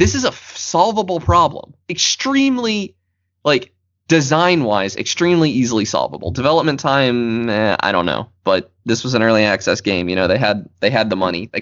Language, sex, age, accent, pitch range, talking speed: English, male, 20-39, American, 95-135 Hz, 175 wpm